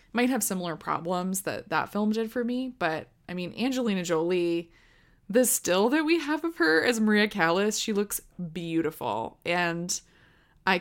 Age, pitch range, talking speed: 20-39, 165-215 Hz, 165 wpm